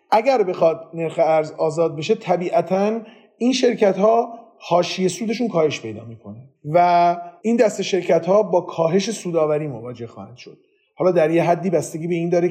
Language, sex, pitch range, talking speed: Persian, male, 155-210 Hz, 165 wpm